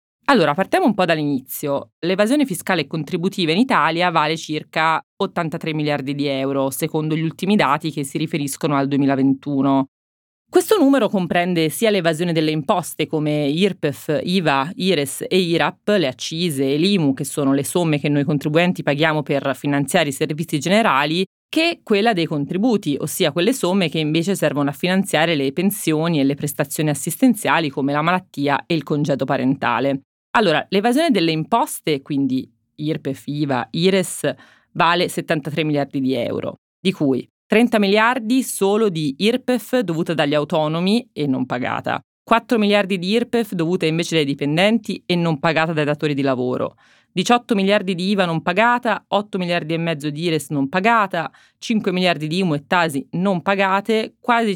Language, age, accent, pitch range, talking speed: Italian, 30-49, native, 145-195 Hz, 160 wpm